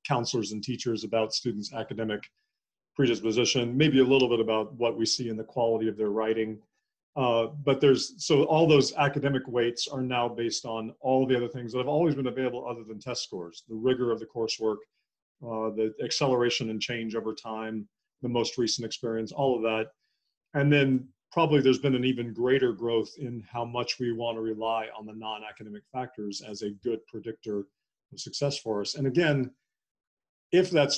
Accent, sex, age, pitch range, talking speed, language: American, male, 40-59, 115-145 Hz, 190 wpm, English